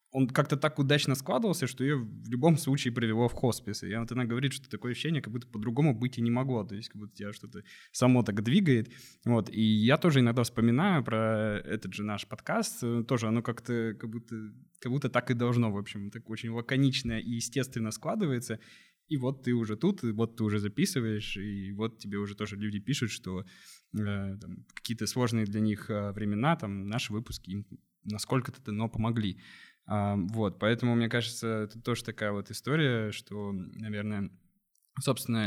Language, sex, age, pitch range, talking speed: Russian, male, 20-39, 105-125 Hz, 185 wpm